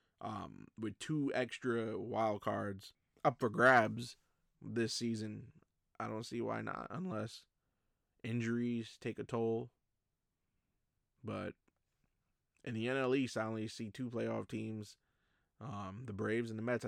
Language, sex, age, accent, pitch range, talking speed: English, male, 20-39, American, 105-130 Hz, 135 wpm